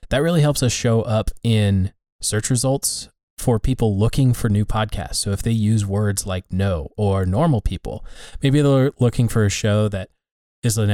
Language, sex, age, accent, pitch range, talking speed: English, male, 20-39, American, 100-120 Hz, 185 wpm